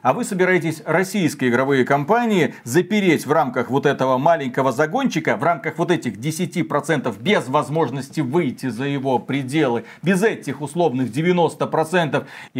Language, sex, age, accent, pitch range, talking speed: Russian, male, 40-59, native, 140-185 Hz, 135 wpm